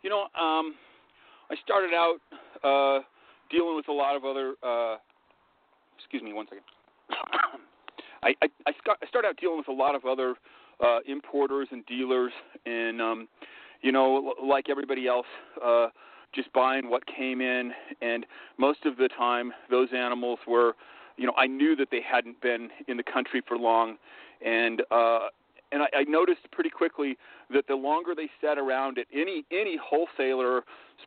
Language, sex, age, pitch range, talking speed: English, male, 40-59, 125-160 Hz, 170 wpm